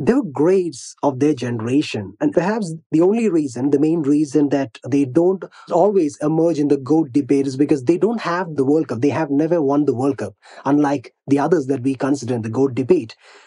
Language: English